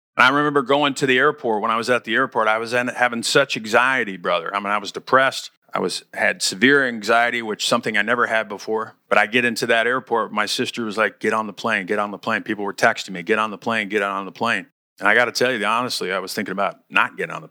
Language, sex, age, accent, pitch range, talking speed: English, male, 40-59, American, 110-130 Hz, 280 wpm